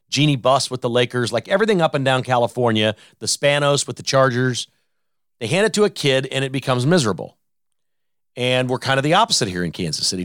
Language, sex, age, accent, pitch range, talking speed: English, male, 40-59, American, 120-155 Hz, 210 wpm